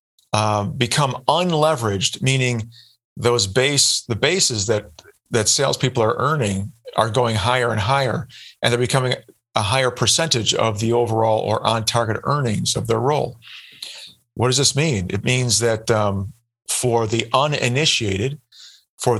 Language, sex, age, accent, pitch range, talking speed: English, male, 50-69, American, 110-125 Hz, 140 wpm